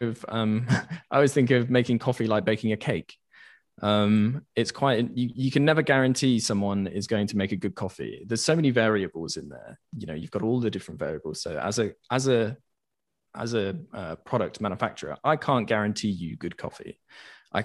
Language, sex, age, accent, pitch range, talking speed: English, male, 20-39, British, 100-125 Hz, 200 wpm